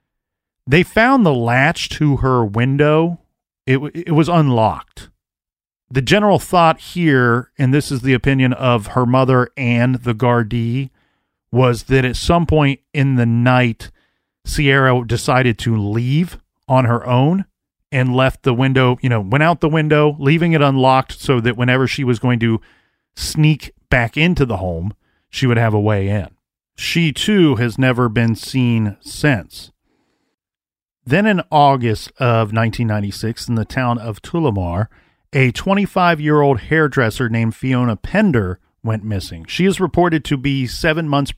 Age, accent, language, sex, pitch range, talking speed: 40-59, American, English, male, 115-150 Hz, 150 wpm